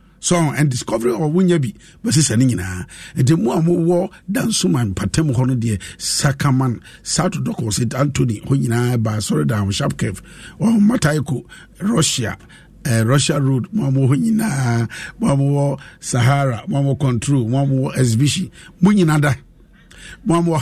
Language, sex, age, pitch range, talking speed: English, male, 50-69, 125-175 Hz, 120 wpm